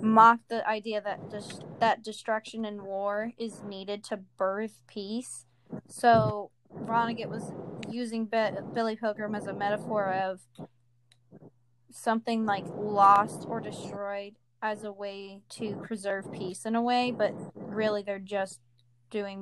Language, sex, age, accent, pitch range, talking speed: English, female, 10-29, American, 195-225 Hz, 140 wpm